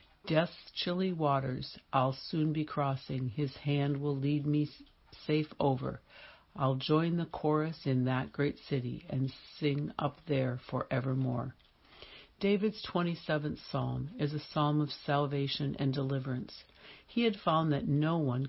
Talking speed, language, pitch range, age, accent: 140 wpm, English, 130-150 Hz, 60-79, American